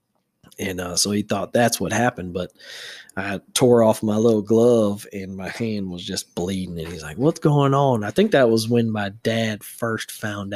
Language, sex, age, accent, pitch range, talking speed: English, male, 20-39, American, 90-110 Hz, 205 wpm